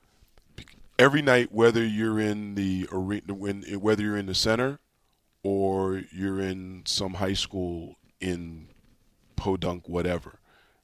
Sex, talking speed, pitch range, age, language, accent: male, 115 wpm, 85-100 Hz, 40-59, English, American